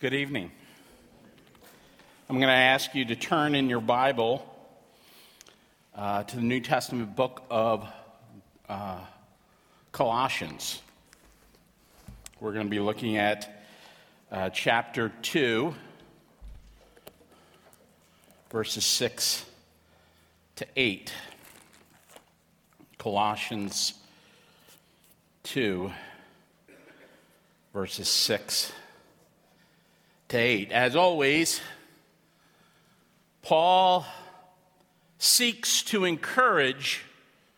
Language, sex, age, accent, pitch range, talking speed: English, male, 50-69, American, 115-155 Hz, 70 wpm